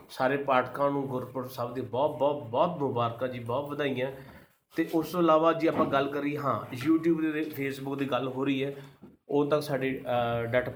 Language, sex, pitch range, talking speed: Punjabi, male, 125-160 Hz, 195 wpm